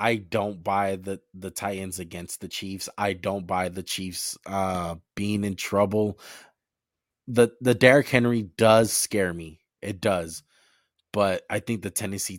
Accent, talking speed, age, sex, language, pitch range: American, 155 wpm, 20-39, male, English, 90-115 Hz